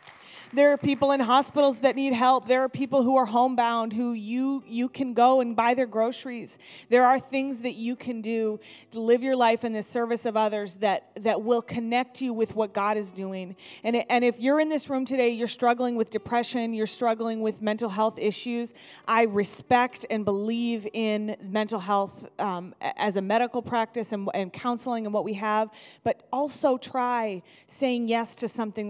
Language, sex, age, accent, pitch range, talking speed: English, female, 30-49, American, 215-250 Hz, 195 wpm